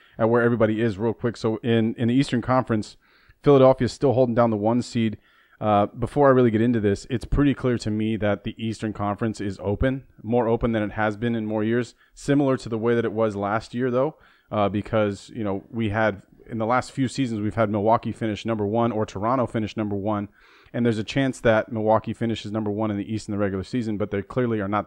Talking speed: 240 wpm